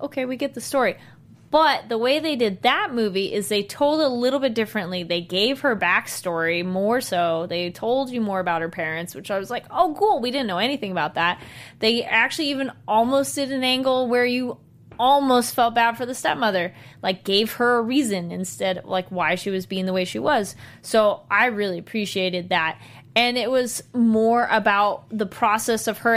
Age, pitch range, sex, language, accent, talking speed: 20-39, 190-270 Hz, female, English, American, 205 wpm